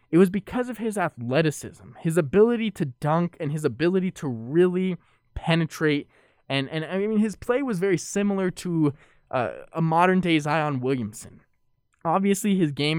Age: 20-39